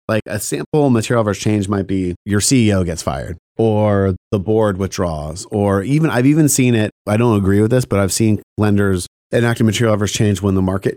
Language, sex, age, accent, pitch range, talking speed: English, male, 30-49, American, 95-120 Hz, 210 wpm